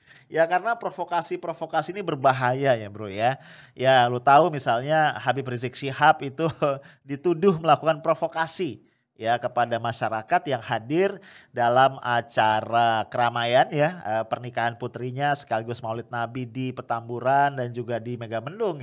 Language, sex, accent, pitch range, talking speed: English, male, Indonesian, 120-160 Hz, 125 wpm